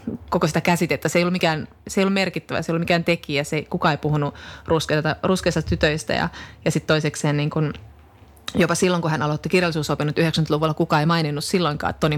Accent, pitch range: native, 155-180 Hz